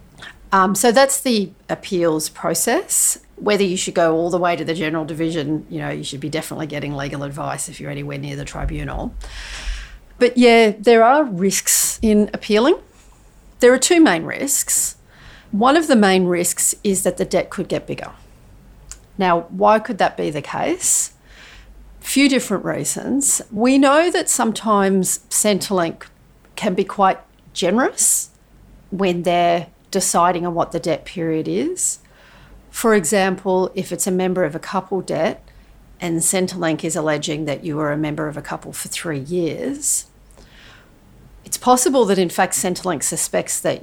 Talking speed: 160 wpm